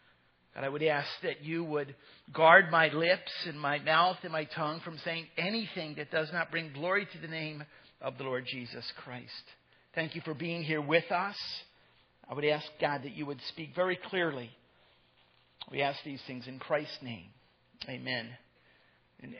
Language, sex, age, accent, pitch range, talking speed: English, male, 50-69, American, 145-180 Hz, 180 wpm